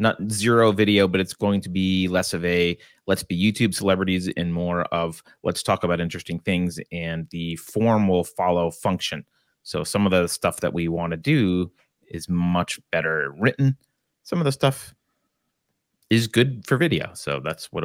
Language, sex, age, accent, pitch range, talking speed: English, male, 30-49, American, 90-115 Hz, 180 wpm